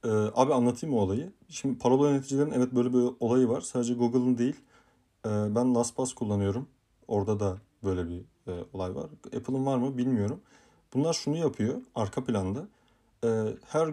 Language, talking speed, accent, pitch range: Turkish, 165 wpm, native, 105-130 Hz